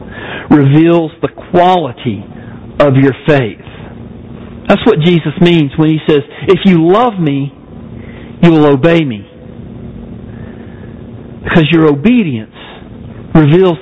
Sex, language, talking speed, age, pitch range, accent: male, English, 110 wpm, 50-69, 135-180 Hz, American